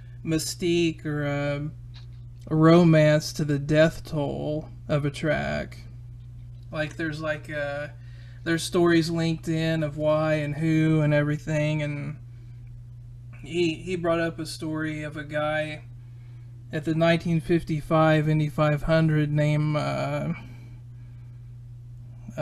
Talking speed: 115 wpm